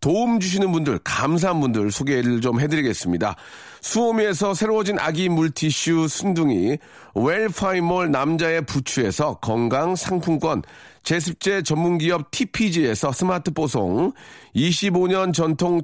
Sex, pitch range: male, 150-195 Hz